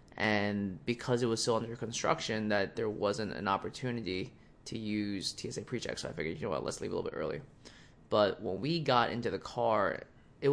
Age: 20-39